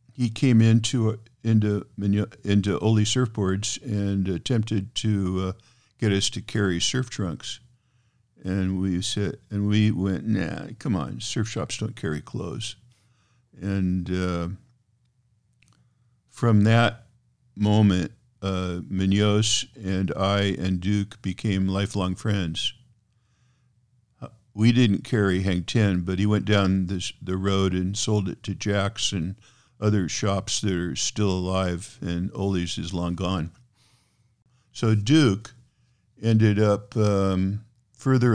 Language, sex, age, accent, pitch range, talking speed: English, male, 50-69, American, 95-120 Hz, 125 wpm